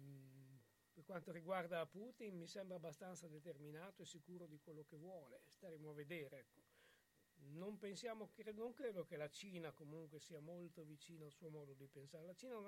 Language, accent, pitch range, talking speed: Italian, native, 155-190 Hz, 170 wpm